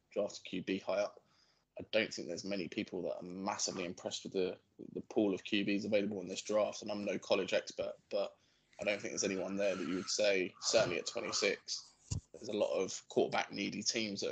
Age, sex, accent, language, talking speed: 20-39, male, British, English, 215 wpm